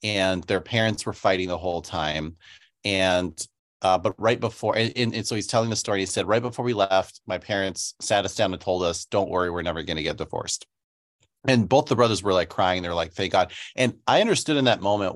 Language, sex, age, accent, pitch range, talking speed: English, male, 30-49, American, 95-115 Hz, 230 wpm